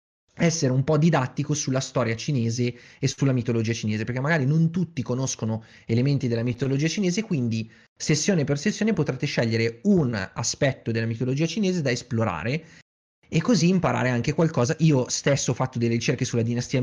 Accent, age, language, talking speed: native, 20-39, Italian, 165 wpm